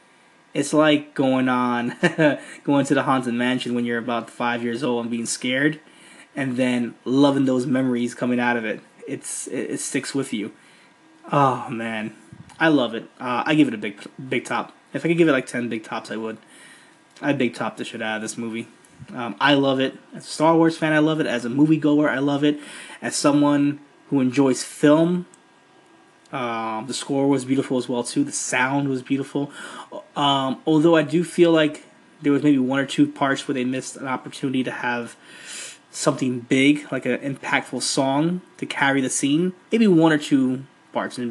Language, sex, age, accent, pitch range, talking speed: English, male, 20-39, American, 125-150 Hz, 200 wpm